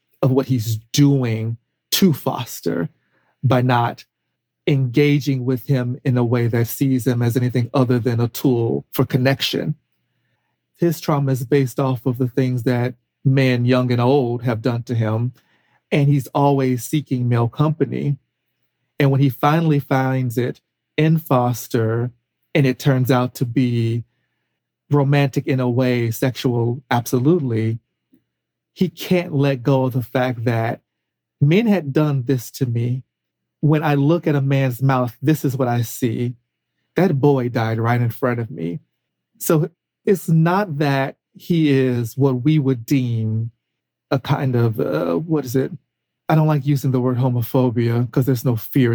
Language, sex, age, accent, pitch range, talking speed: English, male, 40-59, American, 120-145 Hz, 160 wpm